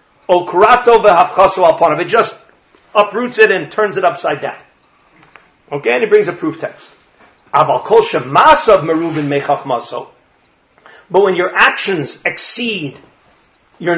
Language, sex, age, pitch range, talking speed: English, male, 50-69, 155-215 Hz, 100 wpm